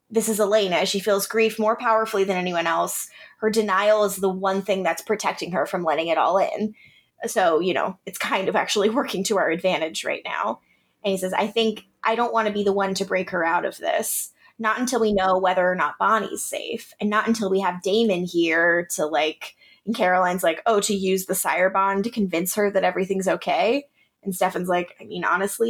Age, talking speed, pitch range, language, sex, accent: 20-39, 220 wpm, 190-225 Hz, English, female, American